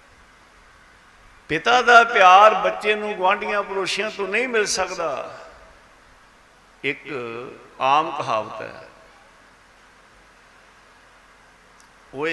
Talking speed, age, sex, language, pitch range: 80 wpm, 60-79, male, Punjabi, 130-195 Hz